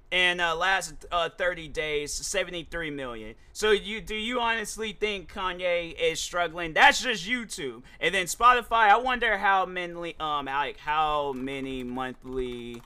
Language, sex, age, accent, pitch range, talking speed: English, male, 30-49, American, 120-165 Hz, 155 wpm